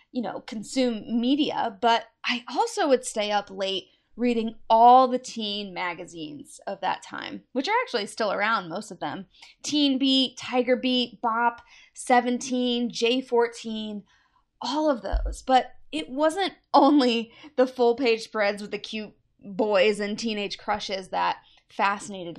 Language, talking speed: English, 145 wpm